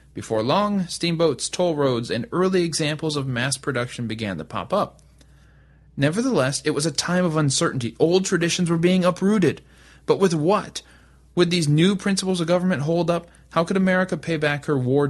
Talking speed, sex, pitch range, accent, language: 180 wpm, male, 130-180 Hz, American, English